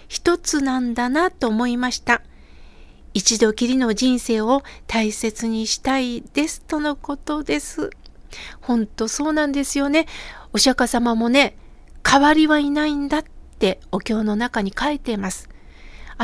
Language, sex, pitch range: Japanese, female, 225-280 Hz